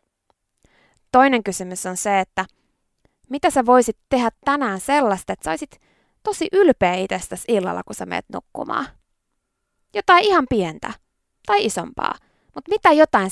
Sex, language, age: female, Finnish, 20-39